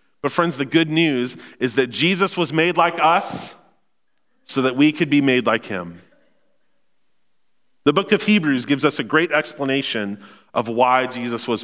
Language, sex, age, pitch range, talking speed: English, male, 40-59, 115-150 Hz, 170 wpm